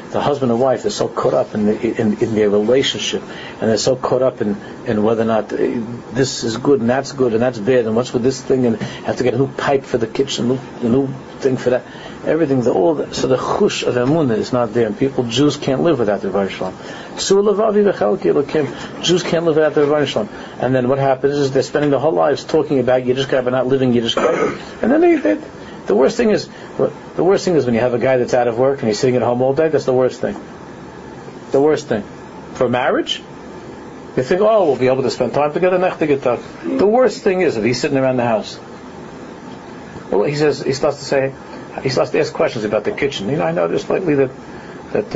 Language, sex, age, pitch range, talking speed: English, male, 50-69, 120-145 Hz, 240 wpm